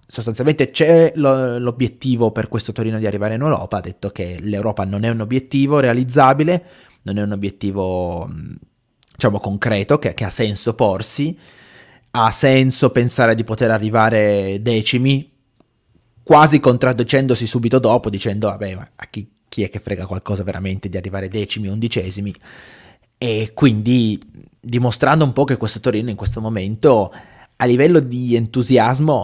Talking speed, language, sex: 145 wpm, Italian, male